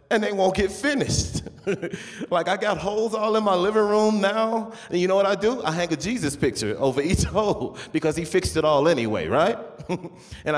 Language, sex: English, male